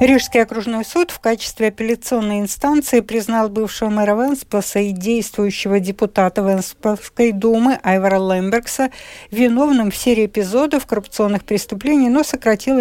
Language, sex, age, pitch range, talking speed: Russian, female, 60-79, 195-245 Hz, 120 wpm